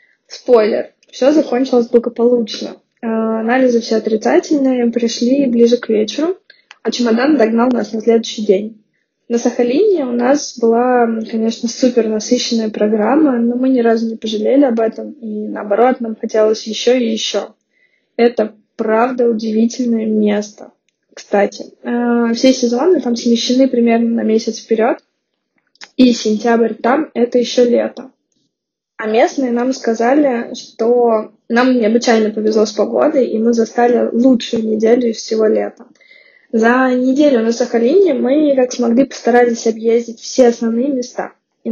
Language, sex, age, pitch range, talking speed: Russian, female, 20-39, 225-255 Hz, 130 wpm